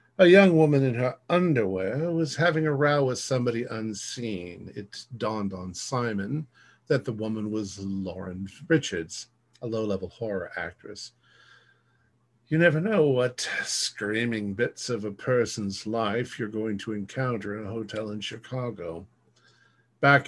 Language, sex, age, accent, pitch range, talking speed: English, male, 50-69, American, 100-125 Hz, 140 wpm